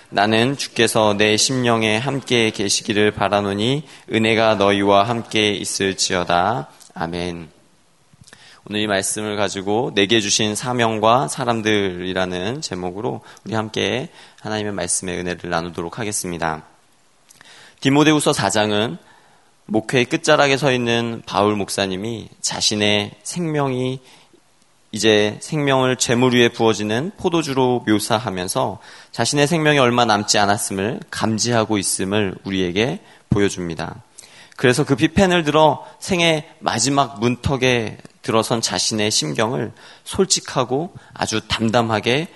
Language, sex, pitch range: Korean, male, 105-130 Hz